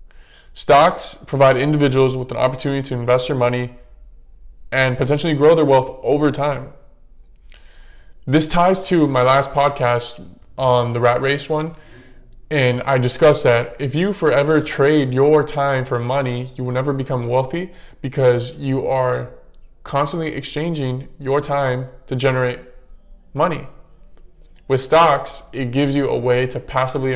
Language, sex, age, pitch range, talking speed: English, male, 20-39, 125-140 Hz, 140 wpm